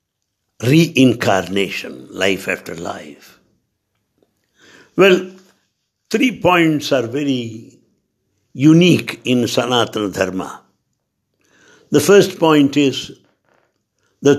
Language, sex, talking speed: English, male, 75 wpm